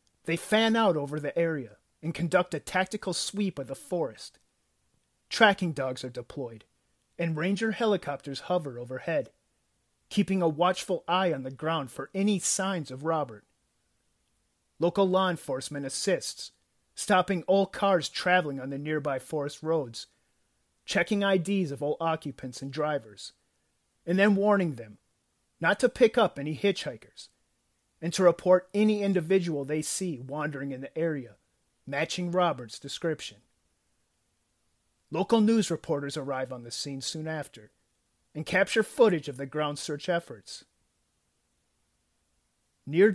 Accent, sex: American, male